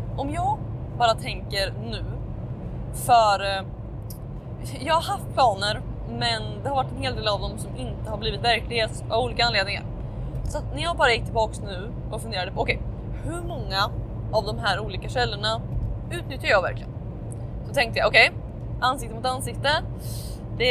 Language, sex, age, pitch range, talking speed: Swedish, female, 20-39, 115-120 Hz, 170 wpm